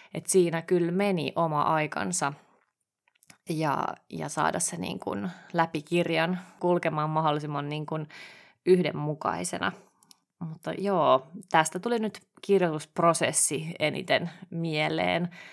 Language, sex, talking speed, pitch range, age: Finnish, female, 95 wpm, 150-180 Hz, 20-39